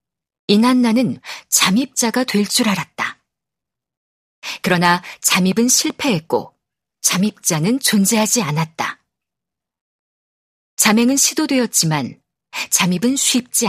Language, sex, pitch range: Korean, female, 180-245 Hz